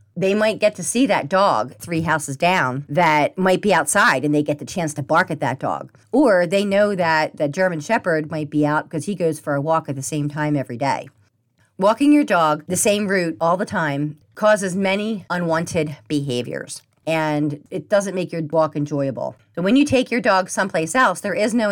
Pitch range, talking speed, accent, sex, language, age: 150-195 Hz, 215 wpm, American, female, English, 40-59